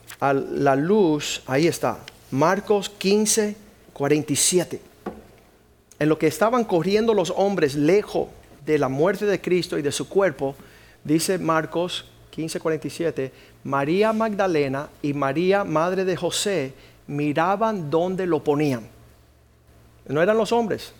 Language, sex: Spanish, male